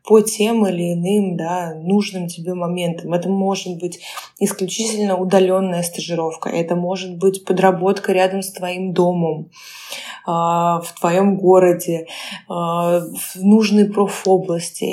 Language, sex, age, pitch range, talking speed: Russian, female, 20-39, 180-215 Hz, 120 wpm